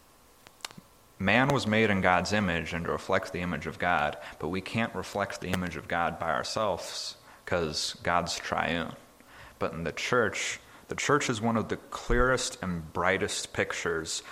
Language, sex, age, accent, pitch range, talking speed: English, male, 30-49, American, 90-105 Hz, 170 wpm